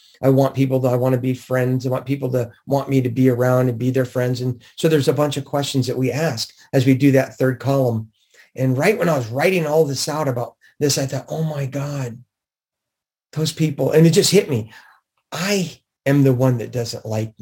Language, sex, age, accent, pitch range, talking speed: English, male, 40-59, American, 125-155 Hz, 235 wpm